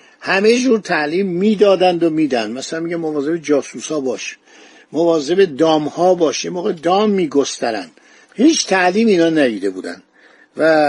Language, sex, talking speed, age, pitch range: Persian, male, 125 wpm, 50-69, 150-195 Hz